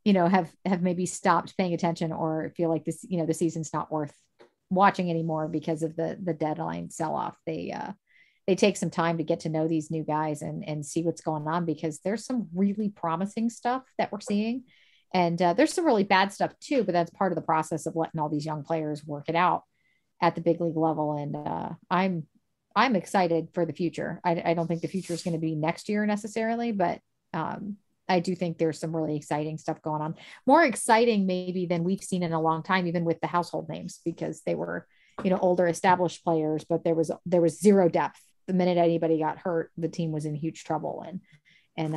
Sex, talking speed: female, 225 wpm